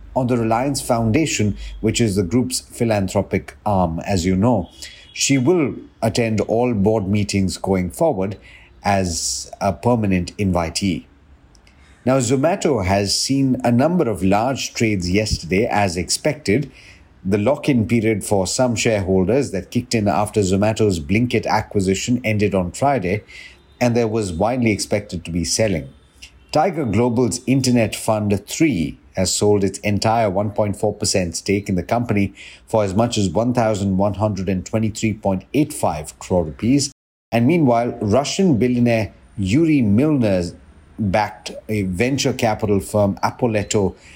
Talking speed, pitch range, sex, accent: 125 wpm, 95-120 Hz, male, Indian